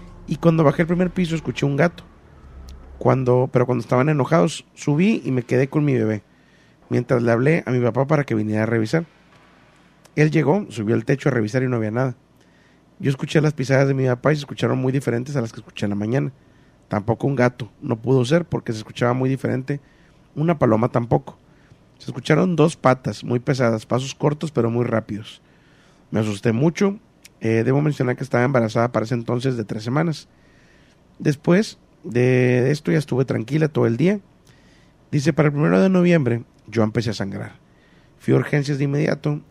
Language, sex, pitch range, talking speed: Spanish, male, 115-155 Hz, 190 wpm